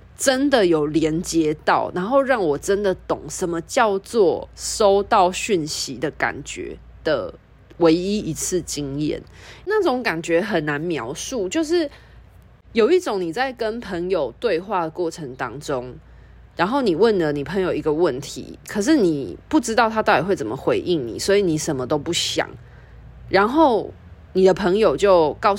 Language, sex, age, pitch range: Chinese, female, 20-39, 155-215 Hz